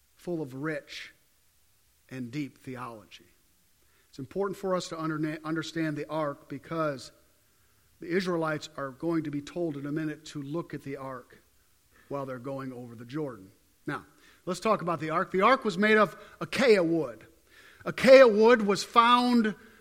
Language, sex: English, male